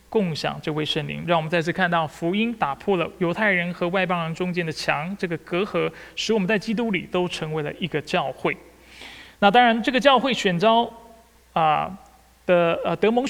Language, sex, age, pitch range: Chinese, male, 20-39, 150-190 Hz